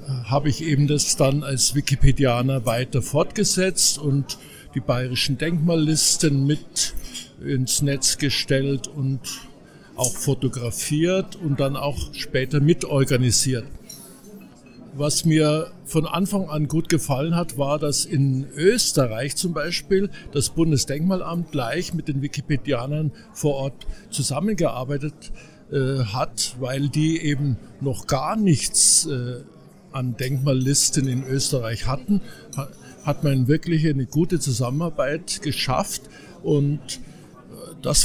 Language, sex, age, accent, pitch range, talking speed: German, male, 60-79, German, 135-155 Hz, 115 wpm